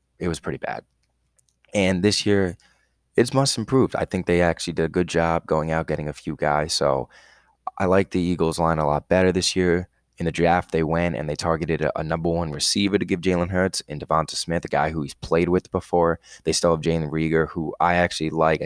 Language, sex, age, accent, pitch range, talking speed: English, male, 20-39, American, 80-90 Hz, 230 wpm